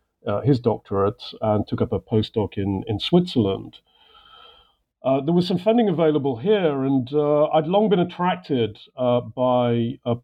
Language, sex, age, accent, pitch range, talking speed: English, male, 50-69, British, 105-130 Hz, 160 wpm